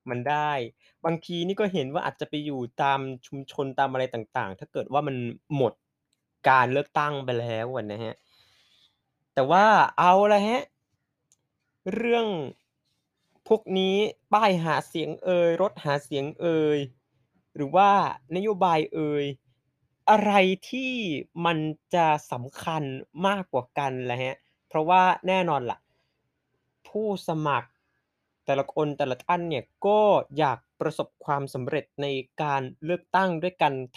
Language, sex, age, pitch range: Thai, male, 20-39, 140-180 Hz